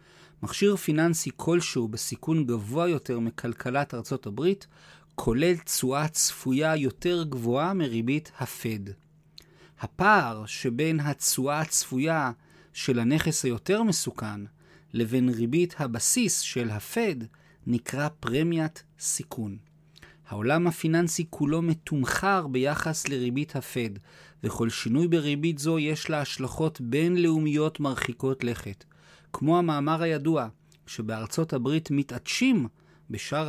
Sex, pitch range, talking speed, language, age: male, 125-165 Hz, 100 wpm, Hebrew, 40-59